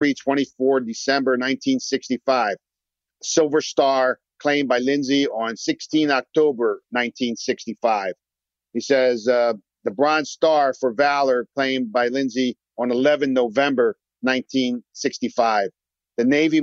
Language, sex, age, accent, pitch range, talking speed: English, male, 50-69, American, 120-145 Hz, 105 wpm